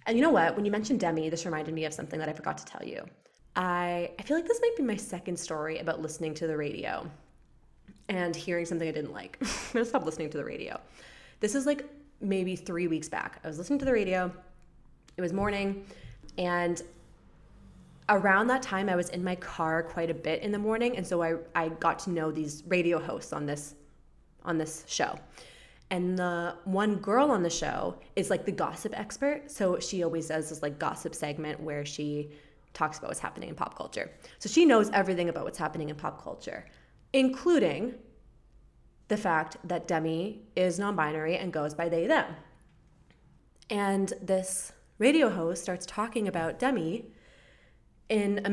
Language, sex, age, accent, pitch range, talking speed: English, female, 20-39, American, 160-210 Hz, 190 wpm